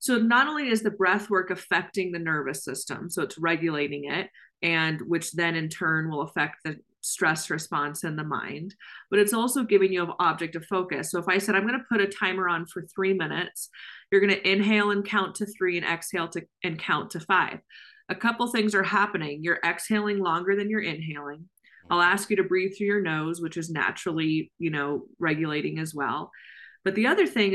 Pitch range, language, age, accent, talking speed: 170-205 Hz, English, 30-49, American, 215 wpm